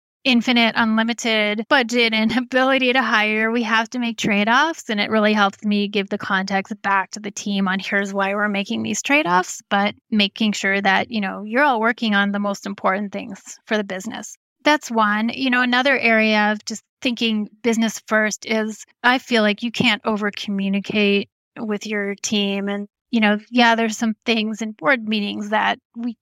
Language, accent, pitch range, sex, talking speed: English, American, 205-235 Hz, female, 190 wpm